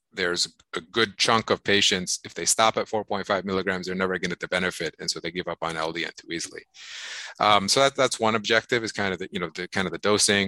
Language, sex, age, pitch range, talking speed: English, male, 30-49, 90-120 Hz, 260 wpm